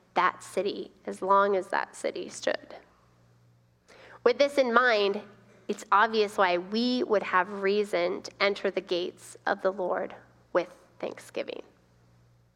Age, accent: 30-49, American